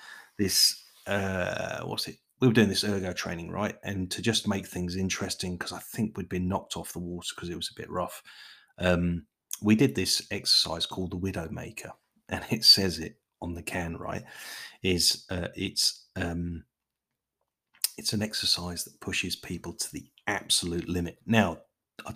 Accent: British